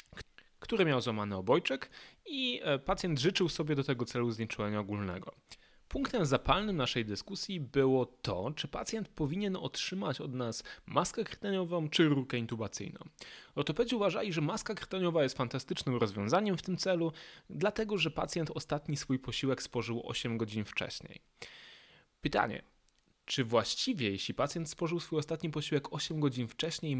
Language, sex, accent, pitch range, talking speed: Polish, male, native, 115-180 Hz, 140 wpm